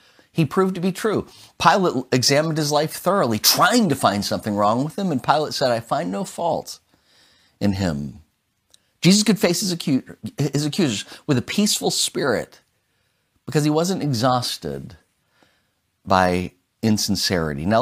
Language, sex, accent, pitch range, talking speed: English, male, American, 95-130 Hz, 140 wpm